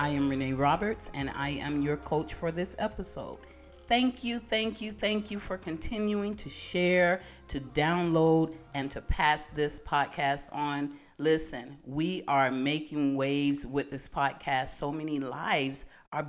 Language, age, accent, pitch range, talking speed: English, 40-59, American, 140-185 Hz, 155 wpm